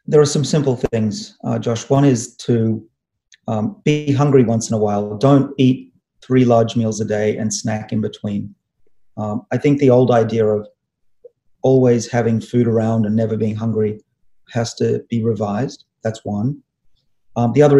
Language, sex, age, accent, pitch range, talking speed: English, male, 30-49, Australian, 110-125 Hz, 175 wpm